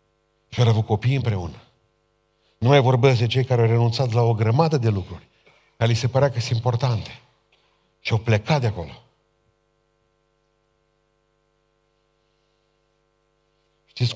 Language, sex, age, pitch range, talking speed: Romanian, male, 50-69, 90-115 Hz, 125 wpm